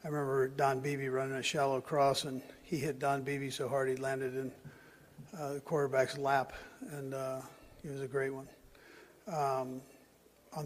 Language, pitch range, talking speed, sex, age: English, 130-145 Hz, 175 wpm, male, 60-79